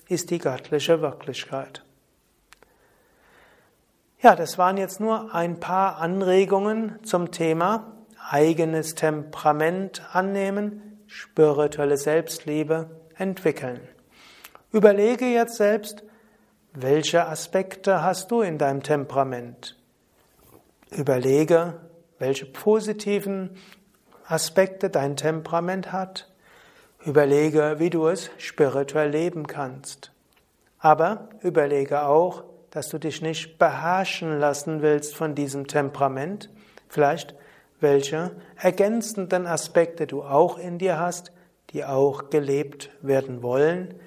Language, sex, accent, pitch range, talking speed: German, male, German, 145-190 Hz, 95 wpm